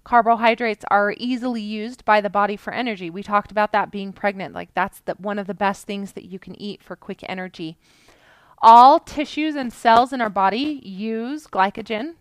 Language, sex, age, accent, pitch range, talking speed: English, female, 20-39, American, 195-250 Hz, 185 wpm